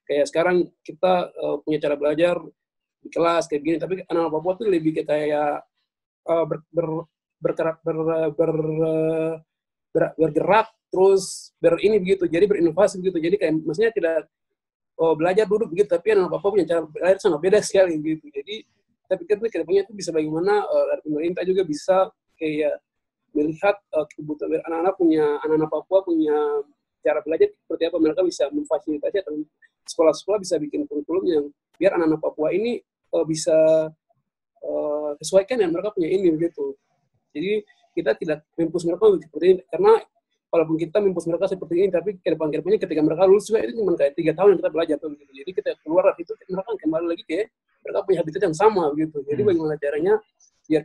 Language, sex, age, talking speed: Indonesian, male, 20-39, 170 wpm